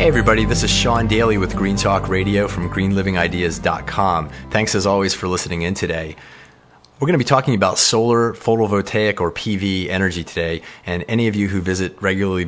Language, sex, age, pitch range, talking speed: English, male, 30-49, 85-100 Hz, 185 wpm